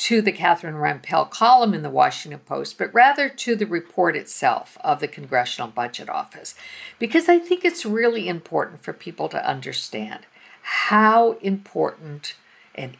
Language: English